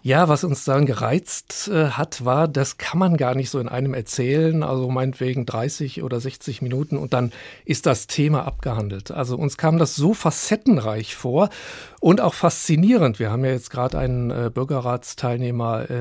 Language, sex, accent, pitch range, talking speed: German, male, German, 125-160 Hz, 170 wpm